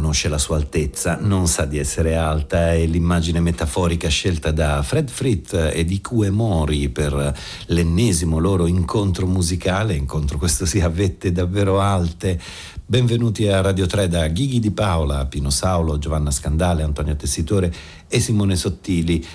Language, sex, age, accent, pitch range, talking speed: Italian, male, 50-69, native, 80-95 Hz, 150 wpm